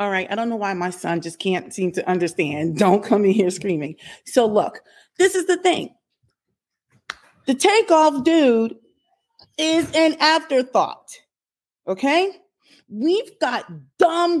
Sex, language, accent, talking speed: female, English, American, 140 wpm